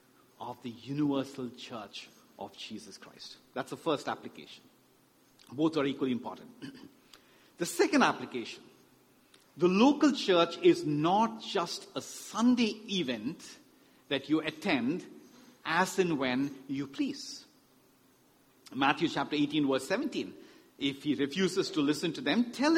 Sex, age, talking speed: male, 50-69, 125 wpm